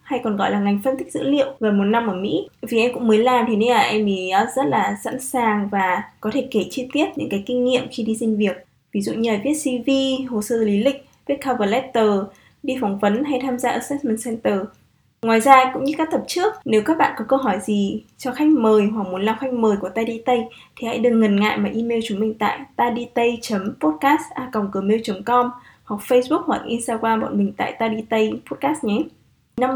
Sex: female